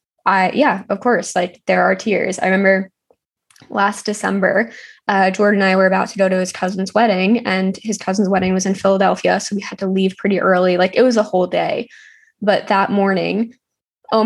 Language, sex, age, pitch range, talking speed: English, female, 10-29, 190-215 Hz, 200 wpm